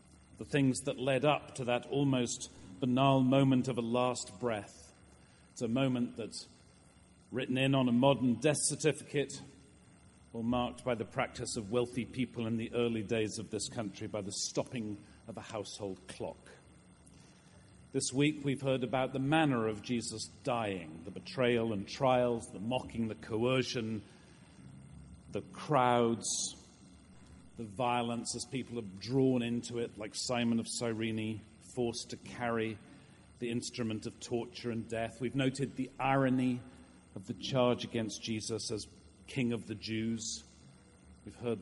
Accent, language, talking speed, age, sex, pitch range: British, English, 150 wpm, 40-59, male, 100-125 Hz